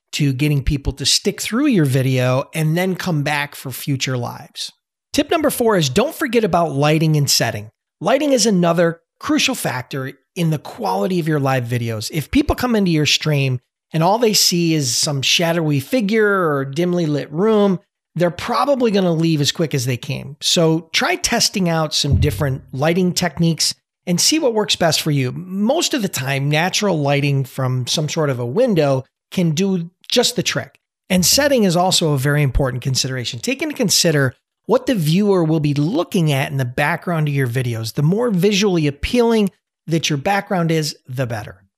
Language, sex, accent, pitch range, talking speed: English, male, American, 140-195 Hz, 185 wpm